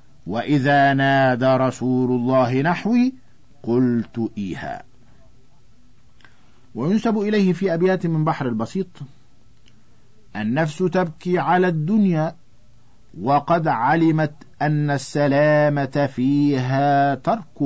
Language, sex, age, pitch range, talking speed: Arabic, male, 50-69, 125-175 Hz, 80 wpm